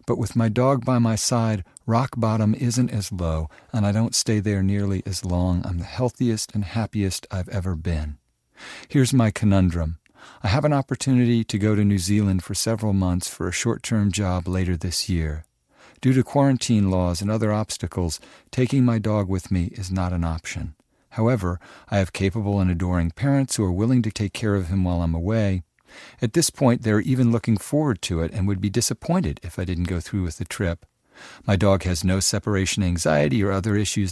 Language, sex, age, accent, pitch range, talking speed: English, male, 50-69, American, 90-115 Hz, 200 wpm